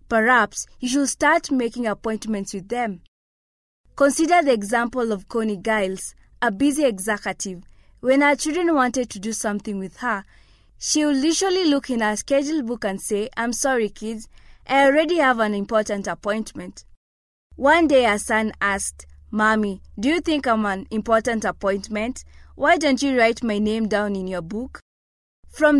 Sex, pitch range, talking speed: female, 210-265 Hz, 160 wpm